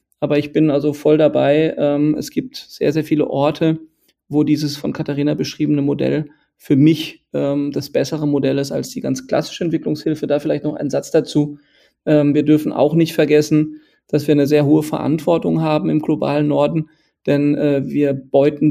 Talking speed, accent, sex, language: 170 wpm, German, male, German